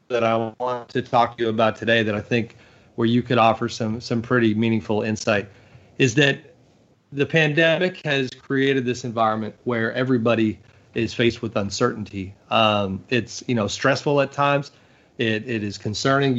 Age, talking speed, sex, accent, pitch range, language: 30-49, 170 wpm, male, American, 110-130 Hz, English